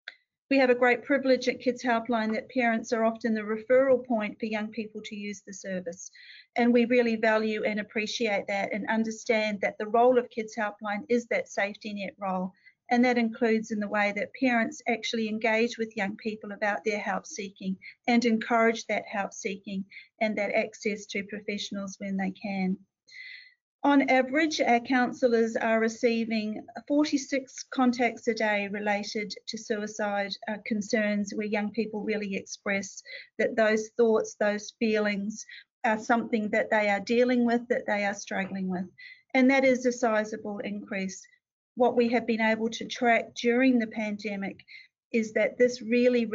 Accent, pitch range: Australian, 205-240 Hz